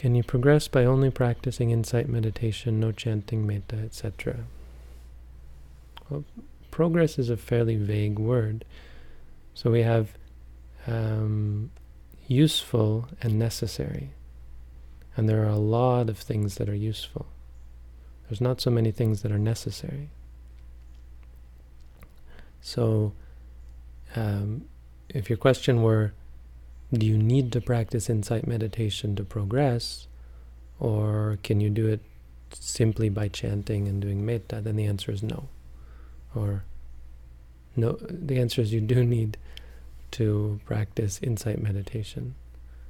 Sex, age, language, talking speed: male, 30-49, English, 120 wpm